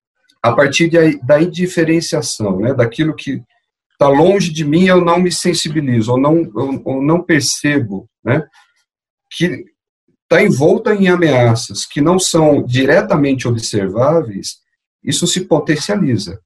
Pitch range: 115-160 Hz